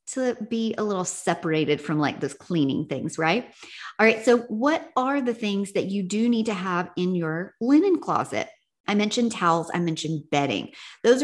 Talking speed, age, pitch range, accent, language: 185 wpm, 40-59, 175-225 Hz, American, English